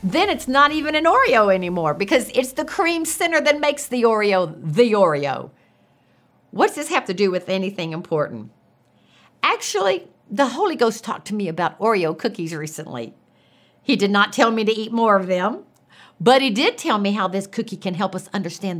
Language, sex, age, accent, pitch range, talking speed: English, female, 50-69, American, 195-280 Hz, 190 wpm